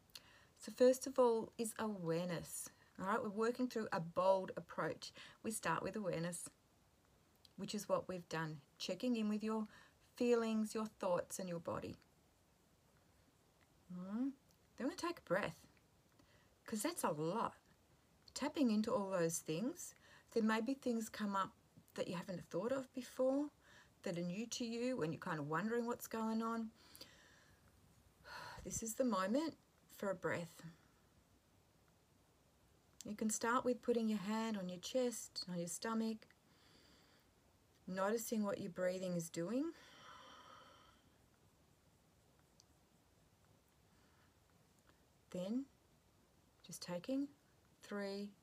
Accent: Australian